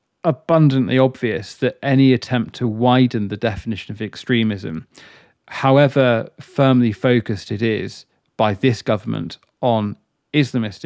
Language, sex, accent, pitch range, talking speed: English, male, British, 110-130 Hz, 115 wpm